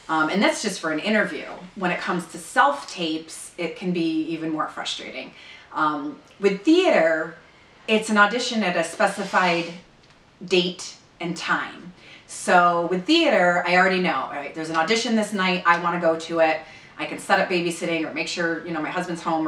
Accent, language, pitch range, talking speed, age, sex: American, English, 160-195 Hz, 190 wpm, 30-49, female